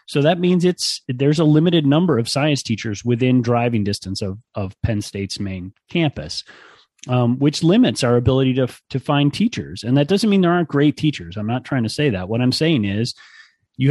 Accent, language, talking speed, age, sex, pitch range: American, English, 205 wpm, 30-49, male, 110-140 Hz